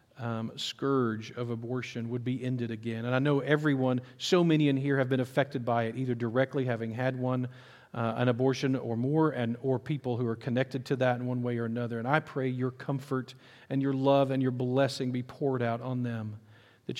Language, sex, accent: English, male, American